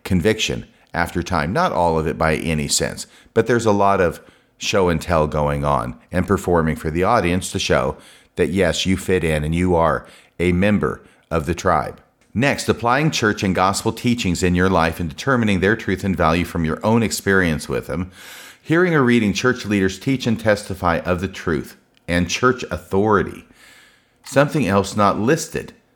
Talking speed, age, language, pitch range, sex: 185 wpm, 40-59, English, 85-105 Hz, male